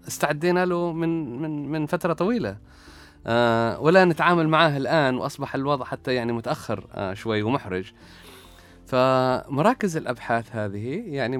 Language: Arabic